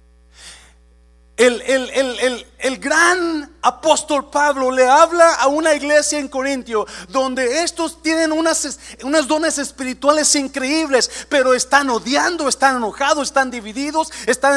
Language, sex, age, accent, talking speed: Spanish, male, 40-59, Mexican, 130 wpm